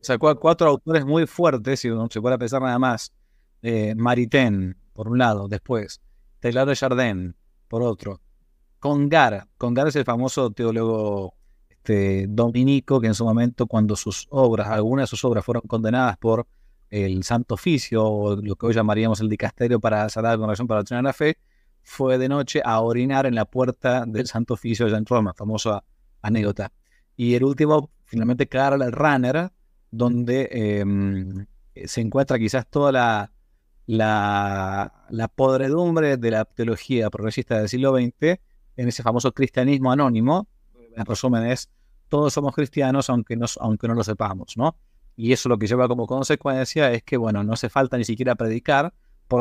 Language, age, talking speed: Spanish, 30-49, 170 wpm